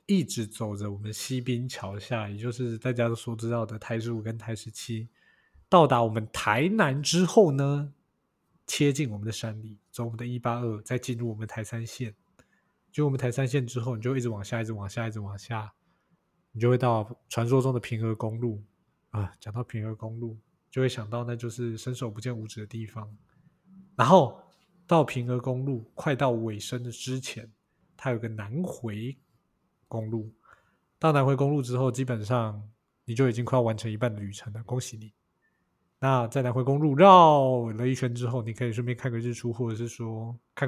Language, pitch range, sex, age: Chinese, 110-130 Hz, male, 20-39